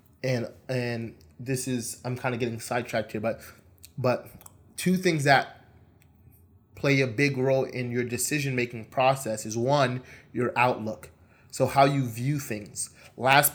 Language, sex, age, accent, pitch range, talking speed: English, male, 20-39, American, 115-135 Hz, 150 wpm